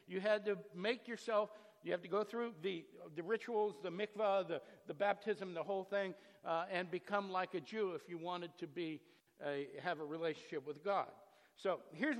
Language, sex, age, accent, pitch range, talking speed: English, male, 60-79, American, 180-230 Hz, 190 wpm